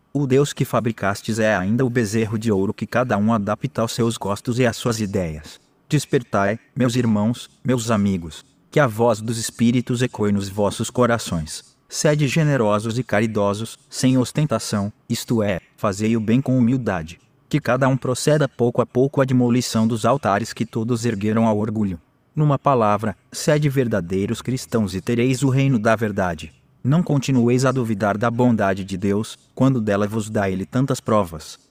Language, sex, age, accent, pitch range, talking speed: Portuguese, male, 20-39, Brazilian, 105-130 Hz, 170 wpm